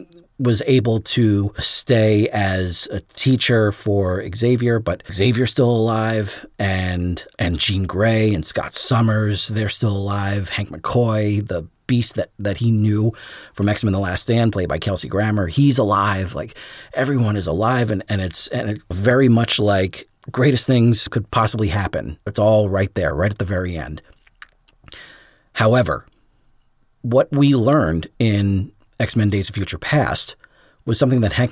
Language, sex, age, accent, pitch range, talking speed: English, male, 40-59, American, 95-120 Hz, 155 wpm